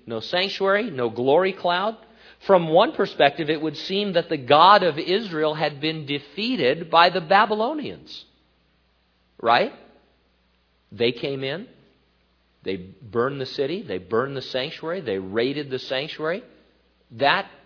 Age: 50-69